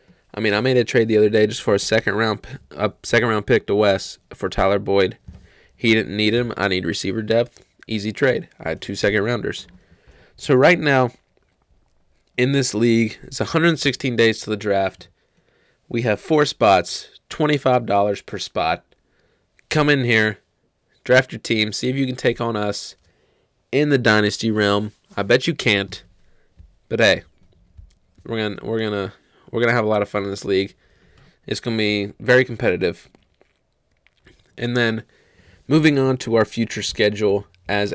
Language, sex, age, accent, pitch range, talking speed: English, male, 20-39, American, 100-120 Hz, 175 wpm